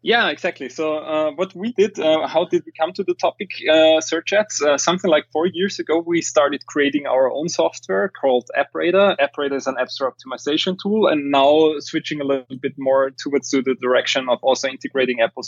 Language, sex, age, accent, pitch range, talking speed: English, male, 20-39, German, 130-170 Hz, 205 wpm